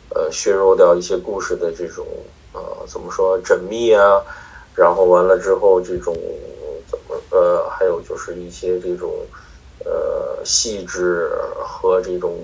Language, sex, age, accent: Chinese, male, 20-39, native